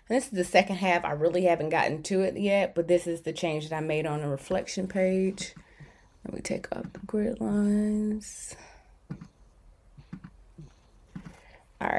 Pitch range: 175-215 Hz